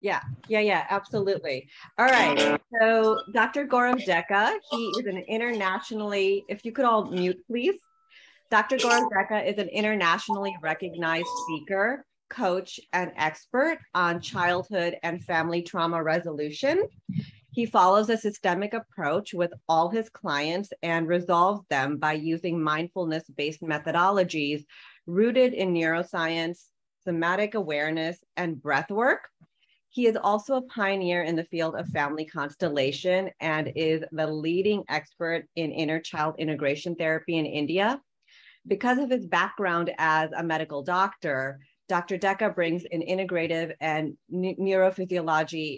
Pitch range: 160-210 Hz